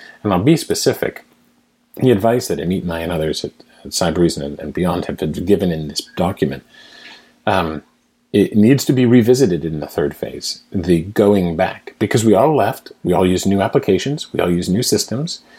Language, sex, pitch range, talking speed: English, male, 90-120 Hz, 195 wpm